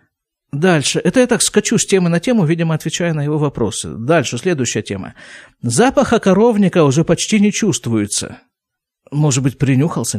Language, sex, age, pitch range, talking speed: Russian, male, 50-69, 125-180 Hz, 155 wpm